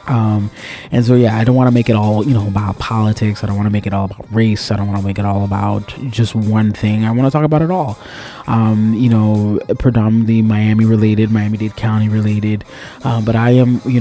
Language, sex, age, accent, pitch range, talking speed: English, male, 20-39, American, 110-145 Hz, 245 wpm